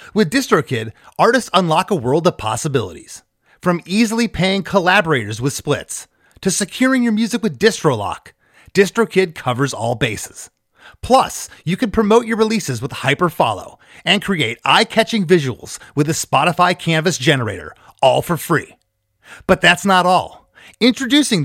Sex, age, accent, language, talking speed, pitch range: male, 30-49, American, English, 135 wpm, 145-210 Hz